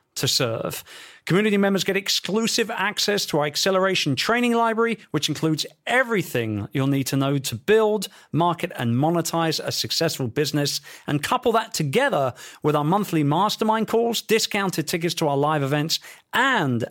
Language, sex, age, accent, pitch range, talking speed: English, male, 40-59, British, 130-190 Hz, 155 wpm